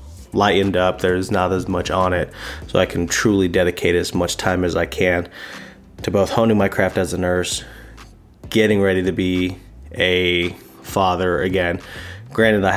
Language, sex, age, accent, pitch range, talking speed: English, male, 20-39, American, 90-110 Hz, 170 wpm